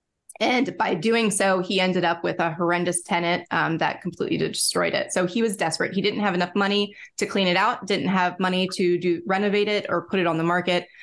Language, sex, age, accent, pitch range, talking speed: English, female, 20-39, American, 175-200 Hz, 230 wpm